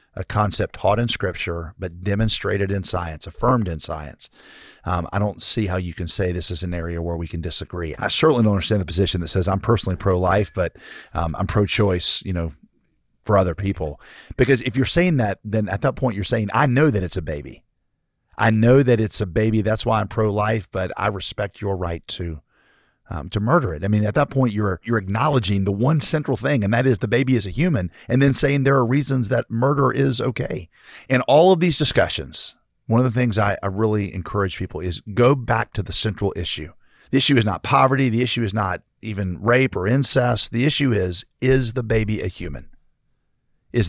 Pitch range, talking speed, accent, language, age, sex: 95-125 Hz, 215 wpm, American, English, 40-59, male